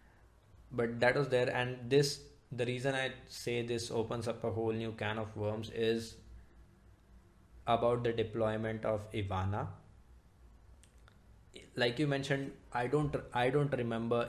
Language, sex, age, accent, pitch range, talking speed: English, male, 20-39, Indian, 105-125 Hz, 140 wpm